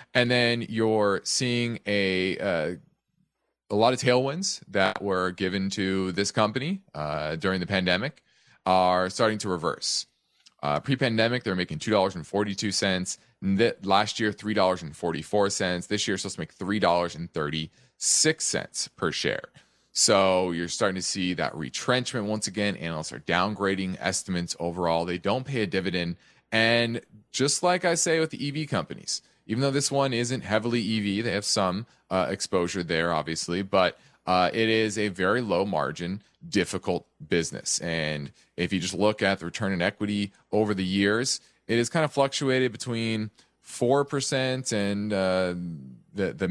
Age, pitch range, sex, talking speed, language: 30-49, 95-125 Hz, male, 150 wpm, English